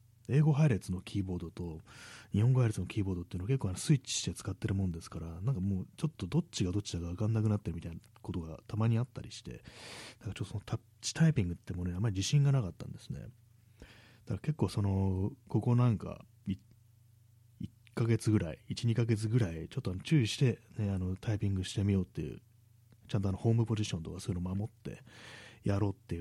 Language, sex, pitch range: Japanese, male, 95-120 Hz